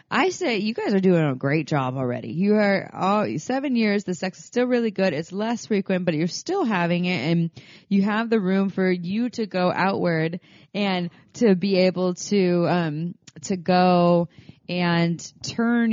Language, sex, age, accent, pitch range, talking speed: English, female, 20-39, American, 155-190 Hz, 185 wpm